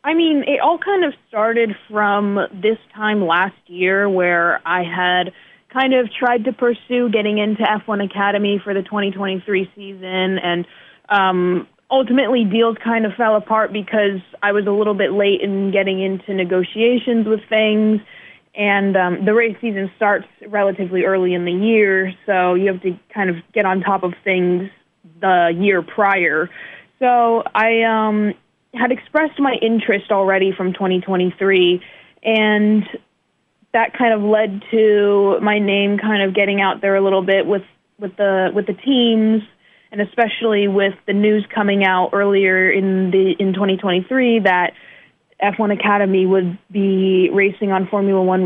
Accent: American